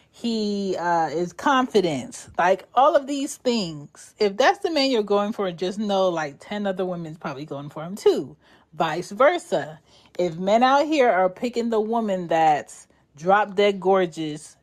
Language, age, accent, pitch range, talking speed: English, 30-49, American, 170-250 Hz, 170 wpm